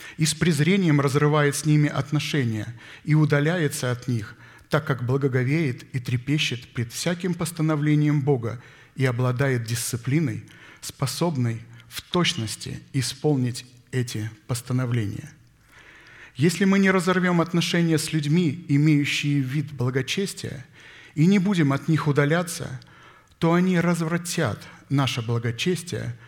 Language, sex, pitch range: Russian, male, 125-155 Hz